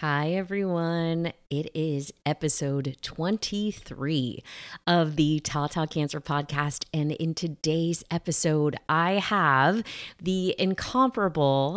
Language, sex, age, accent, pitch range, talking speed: English, female, 30-49, American, 145-180 Hz, 95 wpm